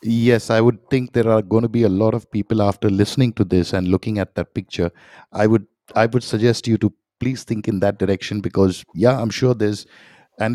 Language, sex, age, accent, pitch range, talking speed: English, male, 50-69, Indian, 100-120 Hz, 230 wpm